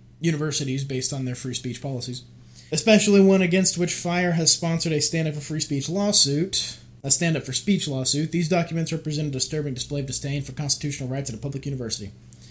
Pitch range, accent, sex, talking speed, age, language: 130-175 Hz, American, male, 190 wpm, 20-39, English